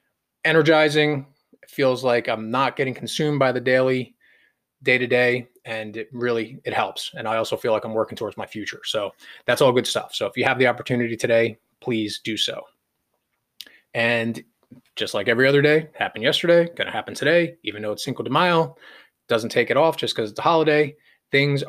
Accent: American